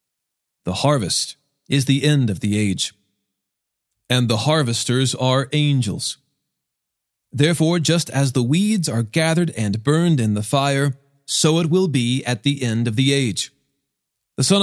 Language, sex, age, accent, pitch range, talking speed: English, male, 40-59, American, 120-165 Hz, 150 wpm